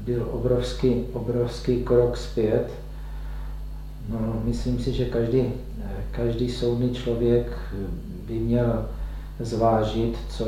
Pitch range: 110-120 Hz